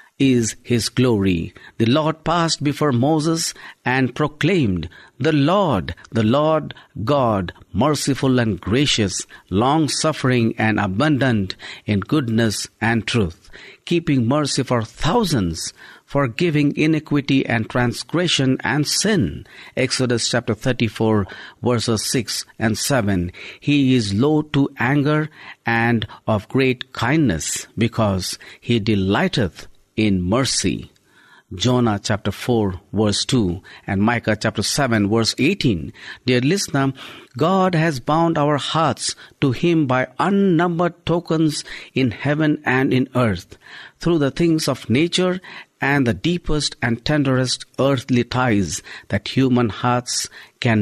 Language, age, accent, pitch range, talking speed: English, 50-69, Indian, 110-150 Hz, 120 wpm